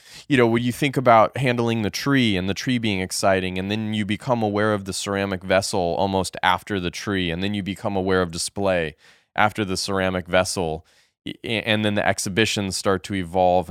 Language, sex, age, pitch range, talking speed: English, male, 20-39, 95-115 Hz, 195 wpm